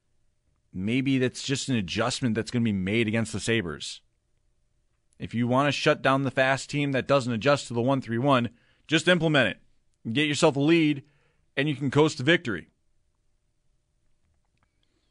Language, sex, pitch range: English, male, 115-165 Hz